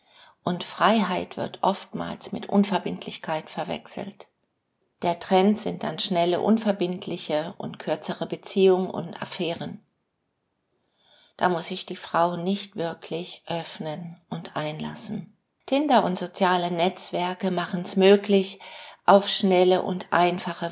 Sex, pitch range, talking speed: female, 170-200 Hz, 115 wpm